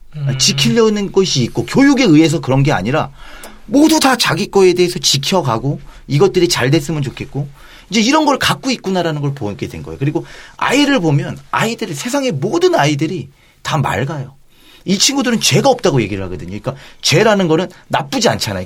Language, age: Korean, 40-59